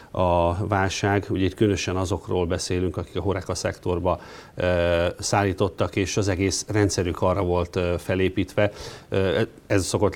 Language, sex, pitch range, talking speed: Hungarian, male, 90-105 Hz, 140 wpm